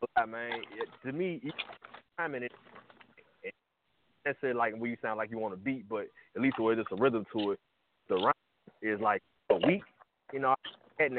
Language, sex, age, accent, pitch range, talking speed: English, male, 20-39, American, 110-135 Hz, 205 wpm